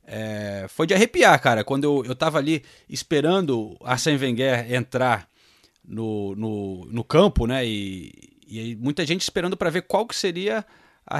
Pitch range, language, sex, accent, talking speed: 125-160 Hz, Portuguese, male, Brazilian, 165 wpm